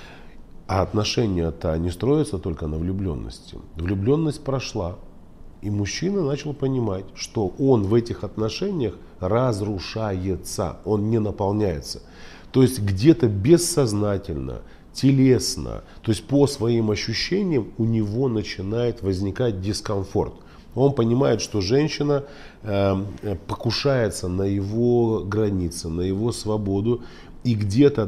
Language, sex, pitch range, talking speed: Russian, male, 90-120 Hz, 105 wpm